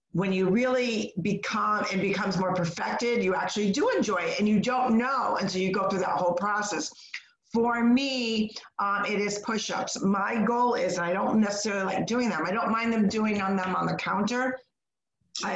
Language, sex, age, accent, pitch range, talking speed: English, female, 50-69, American, 185-230 Hz, 200 wpm